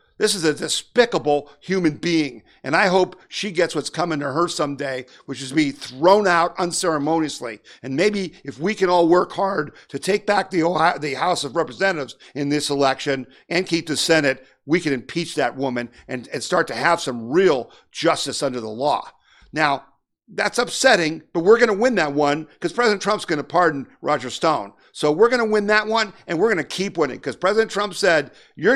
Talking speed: 205 wpm